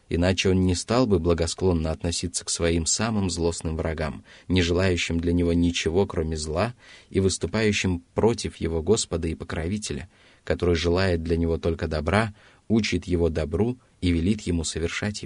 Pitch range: 85-105 Hz